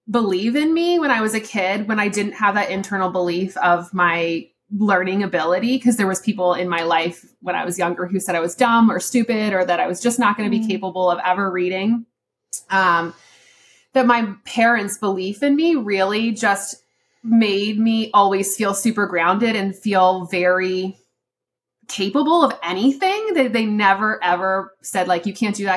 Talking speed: 190 wpm